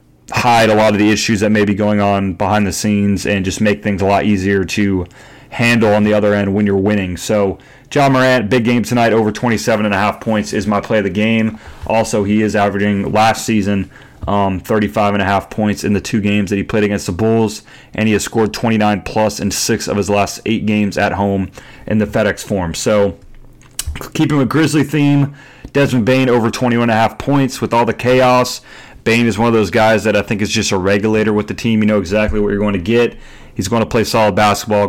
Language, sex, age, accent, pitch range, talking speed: English, male, 30-49, American, 100-110 Hz, 220 wpm